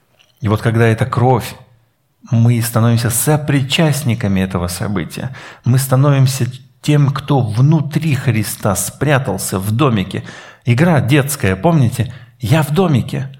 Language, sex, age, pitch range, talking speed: Russian, male, 50-69, 110-155 Hz, 110 wpm